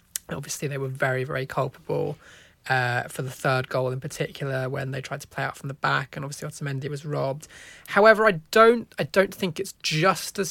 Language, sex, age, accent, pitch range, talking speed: English, male, 20-39, British, 135-160 Hz, 205 wpm